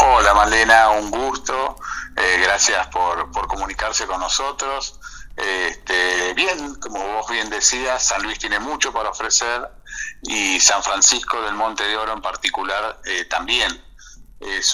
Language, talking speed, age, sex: Spanish, 140 wpm, 50-69, male